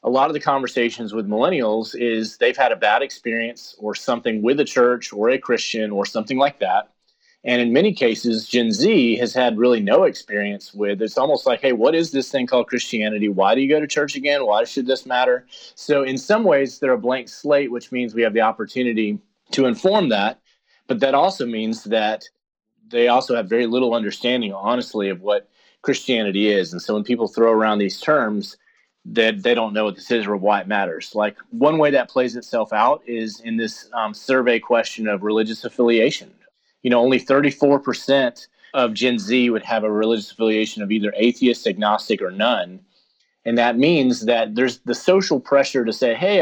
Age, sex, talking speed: 30-49, male, 200 wpm